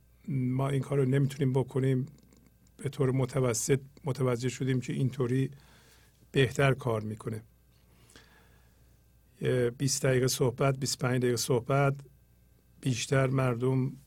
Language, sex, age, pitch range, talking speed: Persian, male, 50-69, 115-140 Hz, 95 wpm